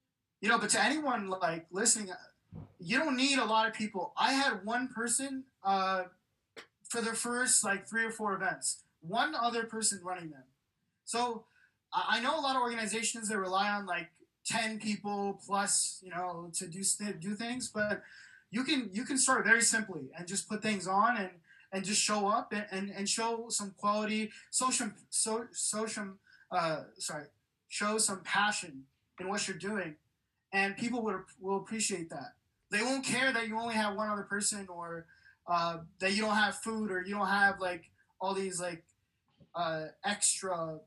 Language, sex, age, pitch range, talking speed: English, male, 20-39, 180-225 Hz, 180 wpm